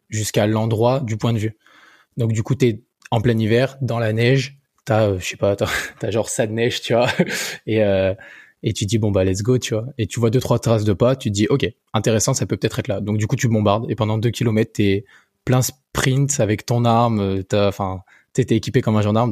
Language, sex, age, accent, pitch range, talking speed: French, male, 20-39, French, 105-120 Hz, 245 wpm